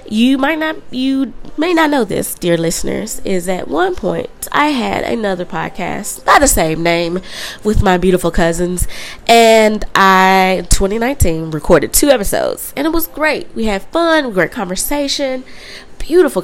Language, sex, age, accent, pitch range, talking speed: English, female, 20-39, American, 175-240 Hz, 155 wpm